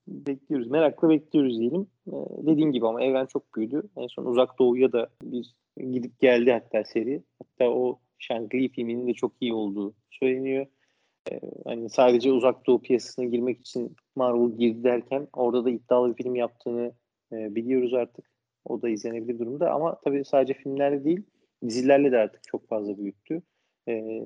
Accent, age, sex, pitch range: native, 30-49, male, 115-130 Hz